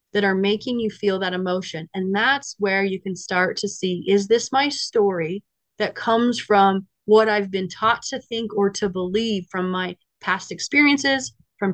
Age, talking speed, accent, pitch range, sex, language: 30-49, 185 wpm, American, 195-245 Hz, female, English